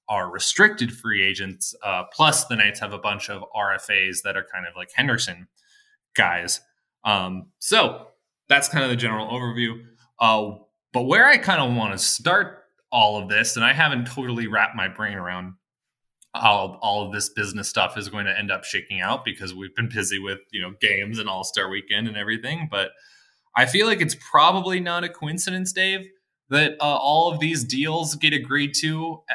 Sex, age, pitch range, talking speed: male, 20-39, 110-150 Hz, 190 wpm